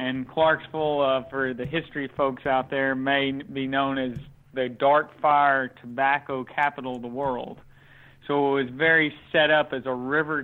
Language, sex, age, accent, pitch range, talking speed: English, male, 40-59, American, 135-155 Hz, 170 wpm